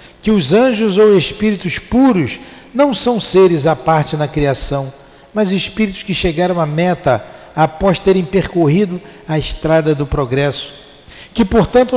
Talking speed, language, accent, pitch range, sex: 140 wpm, Portuguese, Brazilian, 140-180 Hz, male